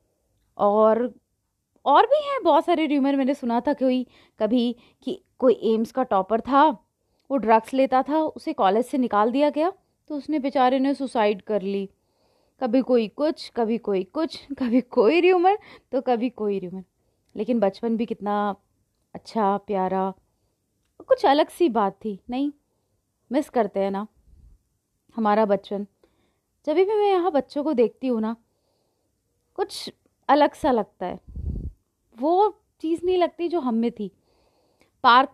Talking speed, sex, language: 155 wpm, female, Hindi